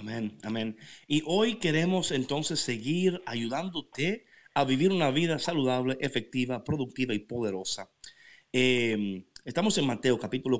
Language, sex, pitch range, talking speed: Spanish, male, 120-160 Hz, 125 wpm